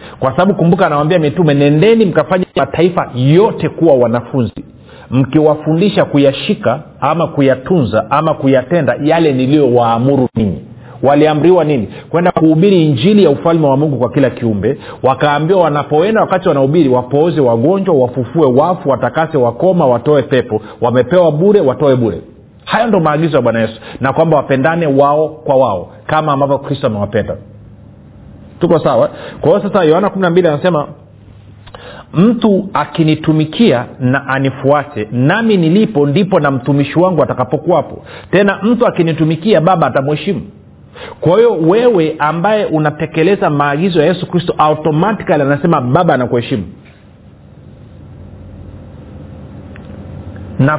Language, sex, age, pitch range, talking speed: Swahili, male, 40-59, 130-175 Hz, 120 wpm